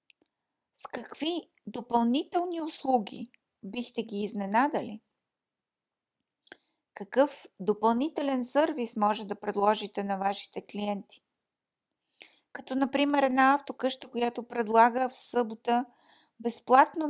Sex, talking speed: female, 90 wpm